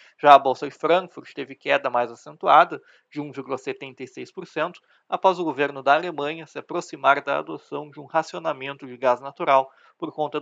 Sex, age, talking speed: male, 20-39, 160 wpm